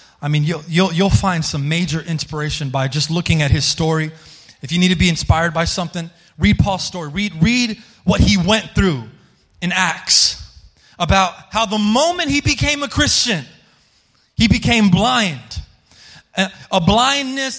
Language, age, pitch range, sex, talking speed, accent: English, 30-49, 170-245 Hz, male, 160 wpm, American